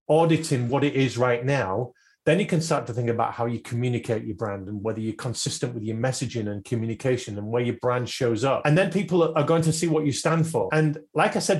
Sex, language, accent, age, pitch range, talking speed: male, English, British, 30-49, 120-160 Hz, 250 wpm